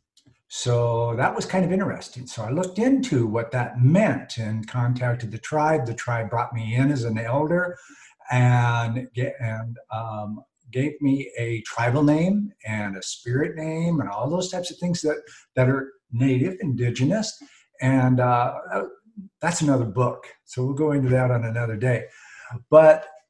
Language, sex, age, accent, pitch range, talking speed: English, male, 50-69, American, 120-150 Hz, 160 wpm